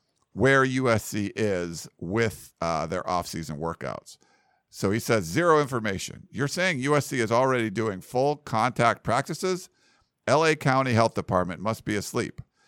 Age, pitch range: 50-69, 105-130 Hz